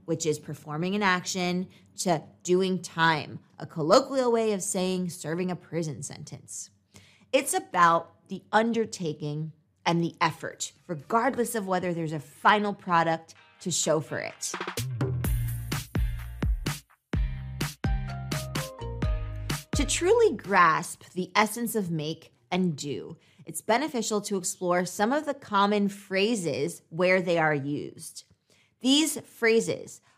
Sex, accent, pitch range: female, American, 155-210 Hz